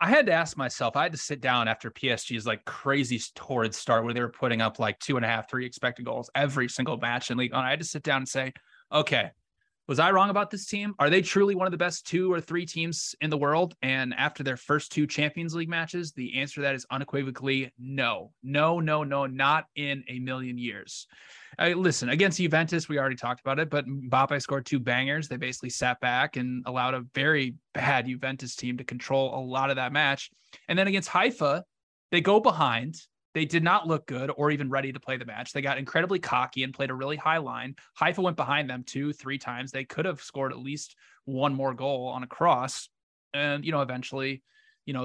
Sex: male